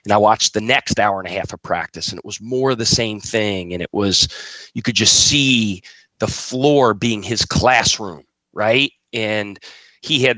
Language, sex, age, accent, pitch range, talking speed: English, male, 30-49, American, 105-135 Hz, 200 wpm